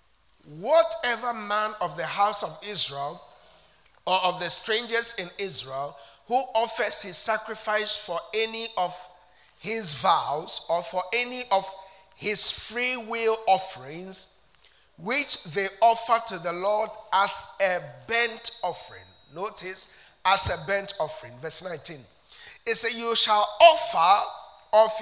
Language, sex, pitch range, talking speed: English, male, 195-255 Hz, 125 wpm